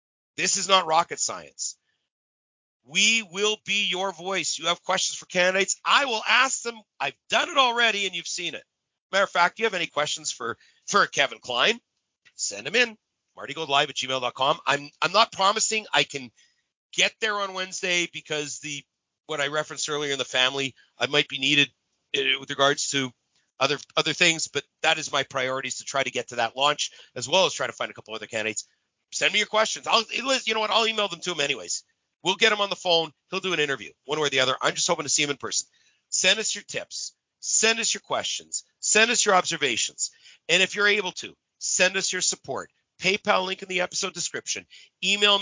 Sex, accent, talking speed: male, American, 210 wpm